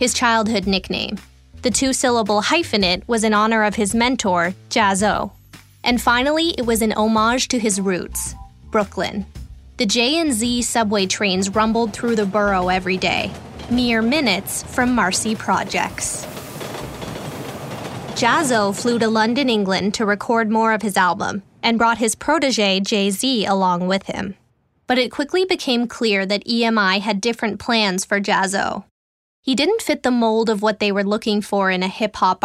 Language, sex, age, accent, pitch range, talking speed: English, female, 20-39, American, 195-240 Hz, 155 wpm